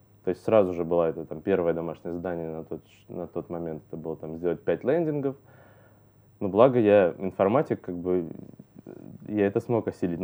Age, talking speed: 20-39, 170 wpm